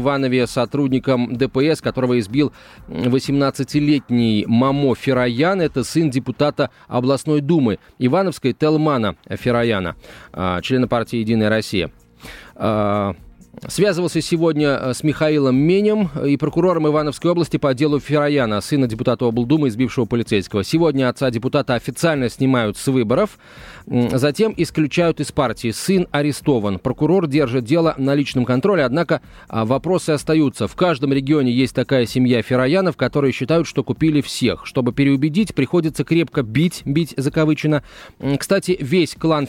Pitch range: 125-150 Hz